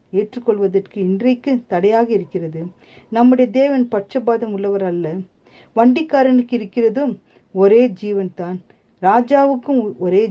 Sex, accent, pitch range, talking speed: female, native, 185-245 Hz, 80 wpm